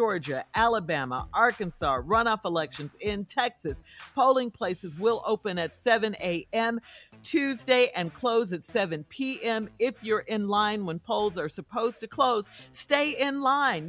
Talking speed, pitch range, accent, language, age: 145 wpm, 170-235 Hz, American, English, 50-69